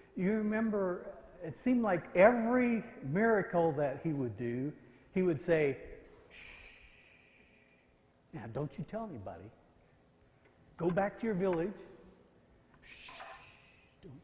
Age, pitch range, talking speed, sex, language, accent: 60-79, 130-185 Hz, 115 wpm, male, English, American